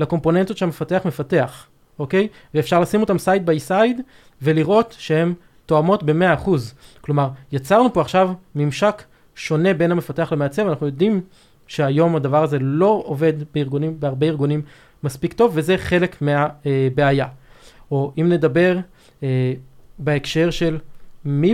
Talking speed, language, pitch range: 130 wpm, Hebrew, 140-185 Hz